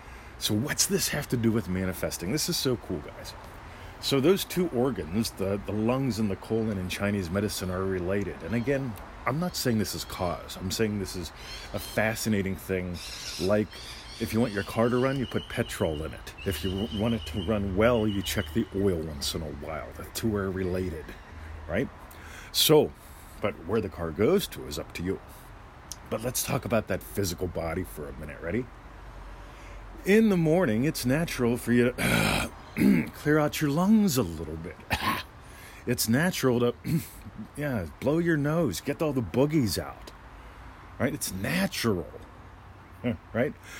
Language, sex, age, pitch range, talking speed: English, male, 40-59, 85-115 Hz, 175 wpm